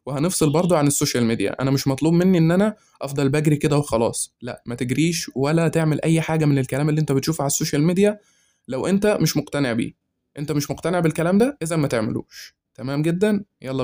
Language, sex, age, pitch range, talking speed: Arabic, male, 20-39, 130-160 Hz, 200 wpm